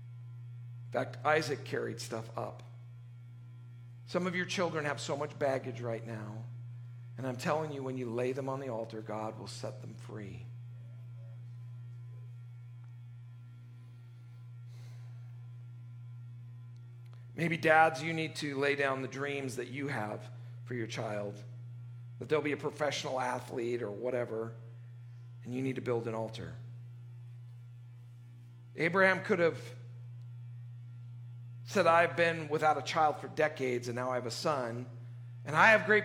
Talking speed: 135 wpm